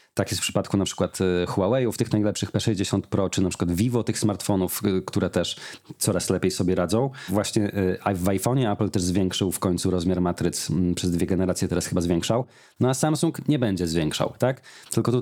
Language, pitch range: Polish, 100-135 Hz